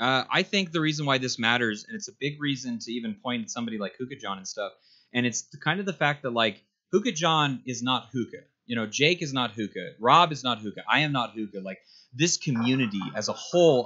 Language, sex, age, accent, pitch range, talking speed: English, male, 30-49, American, 115-155 Hz, 240 wpm